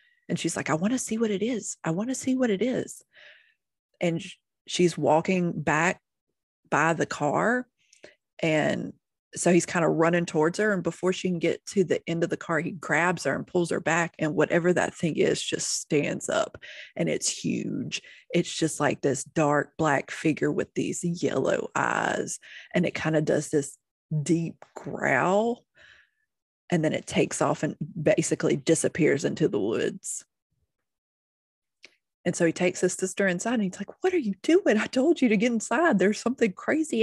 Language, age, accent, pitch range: English, 30-49, American, 160-205 Hz